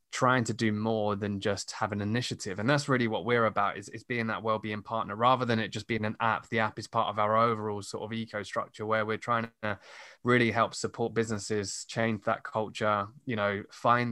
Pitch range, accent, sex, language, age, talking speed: 110-120 Hz, British, male, English, 20-39, 225 wpm